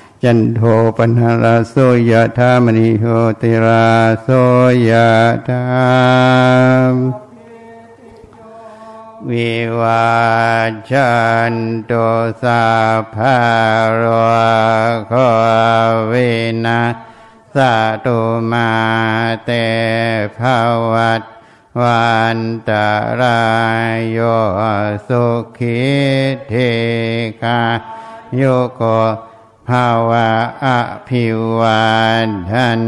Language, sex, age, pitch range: Thai, male, 60-79, 115-125 Hz